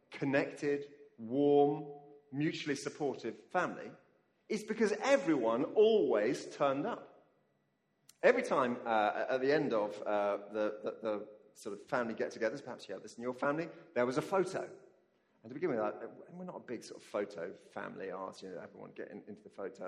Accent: British